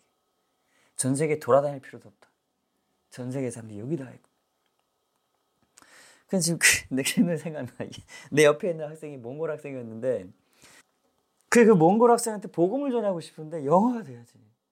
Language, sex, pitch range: Korean, male, 120-195 Hz